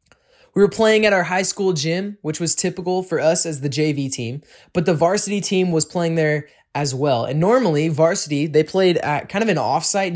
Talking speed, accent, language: 215 wpm, American, English